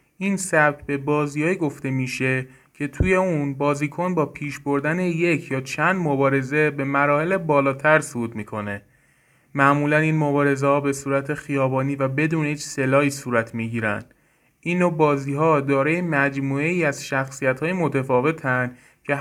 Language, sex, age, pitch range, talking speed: Persian, male, 30-49, 135-155 Hz, 140 wpm